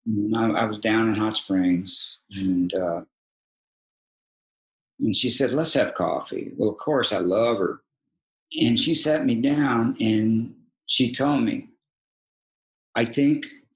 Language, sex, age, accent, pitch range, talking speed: English, male, 50-69, American, 100-160 Hz, 135 wpm